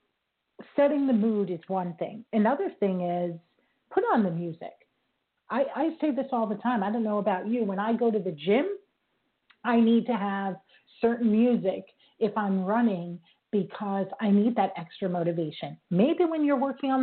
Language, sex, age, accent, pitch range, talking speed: English, female, 40-59, American, 195-255 Hz, 180 wpm